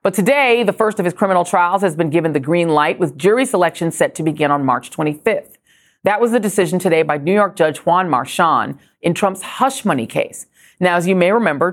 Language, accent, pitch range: English, American, 150-210 Hz